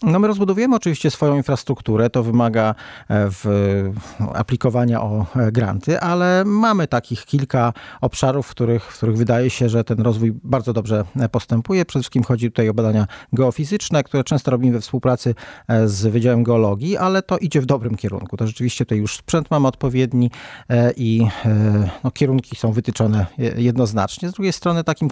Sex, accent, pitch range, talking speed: male, native, 110-135 Hz, 155 wpm